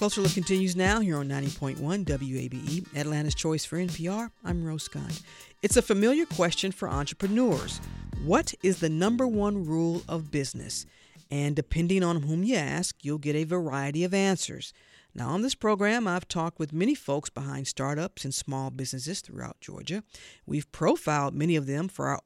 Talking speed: 175 wpm